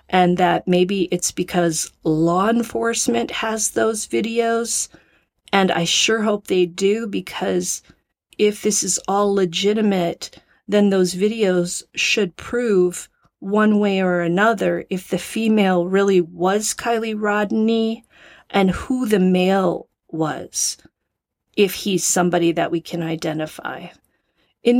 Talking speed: 125 wpm